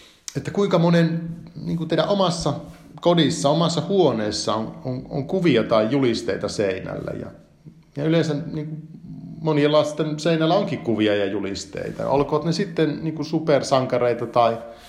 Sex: male